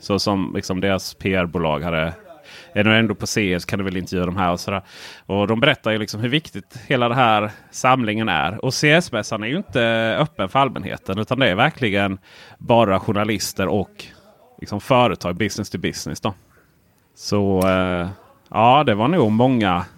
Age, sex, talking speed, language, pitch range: 30-49, male, 180 wpm, Swedish, 100-115 Hz